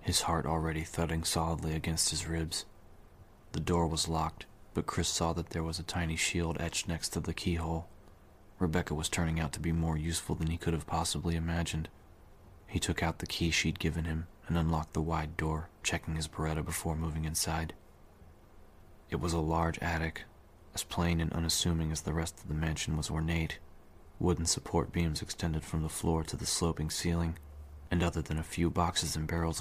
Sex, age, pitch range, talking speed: male, 30-49, 80-90 Hz, 195 wpm